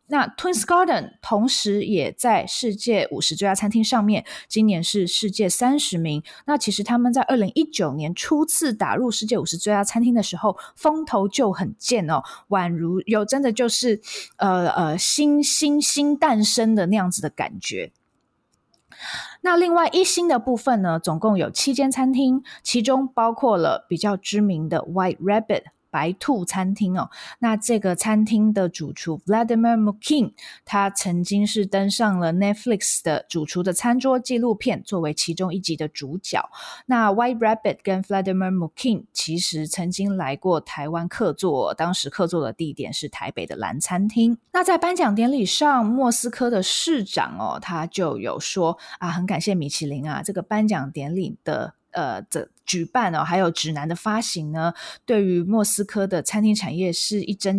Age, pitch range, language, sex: 20-39, 180-240 Hz, Chinese, female